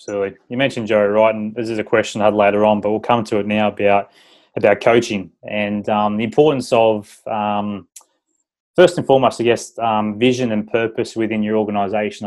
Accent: Australian